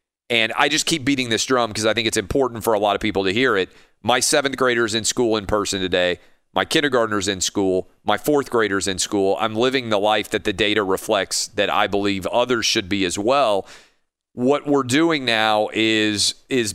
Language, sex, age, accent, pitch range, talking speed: English, male, 40-59, American, 100-125 Hz, 210 wpm